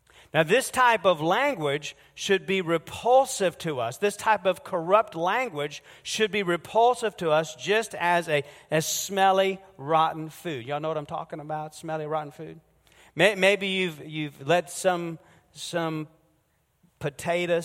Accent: American